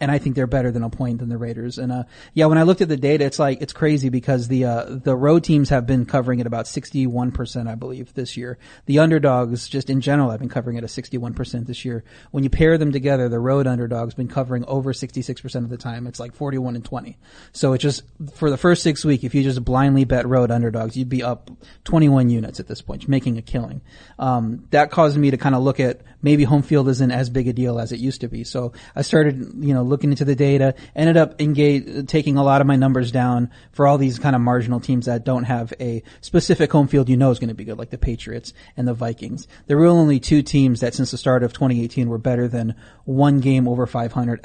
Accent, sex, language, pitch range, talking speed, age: American, male, English, 120-140 Hz, 250 wpm, 30-49